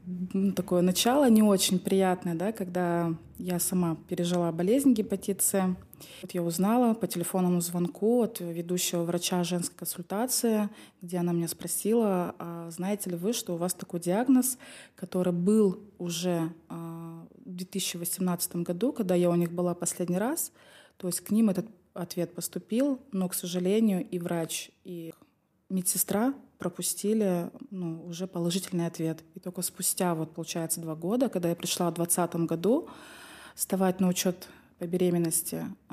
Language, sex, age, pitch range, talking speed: Russian, female, 20-39, 175-200 Hz, 140 wpm